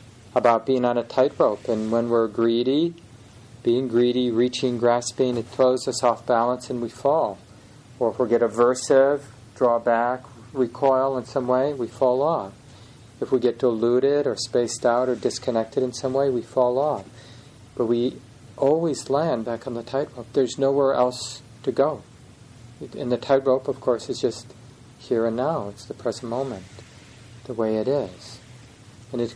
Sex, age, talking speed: male, 40-59, 170 wpm